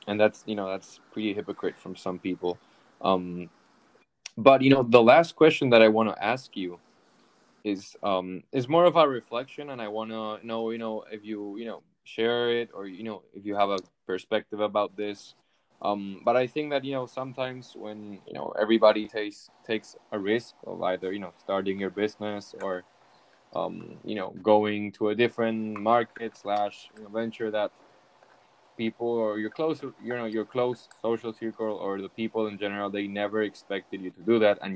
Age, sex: 10-29, male